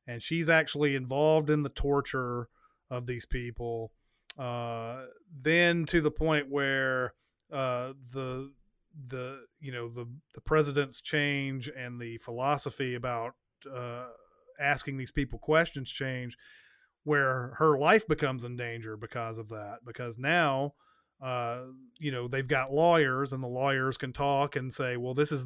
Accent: American